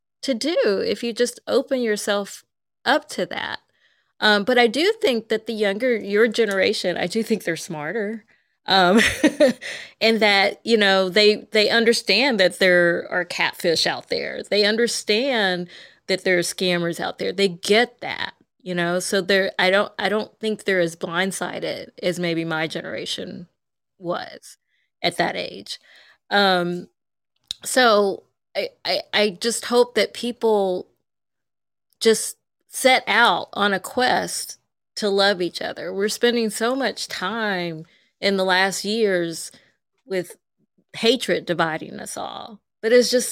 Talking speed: 145 wpm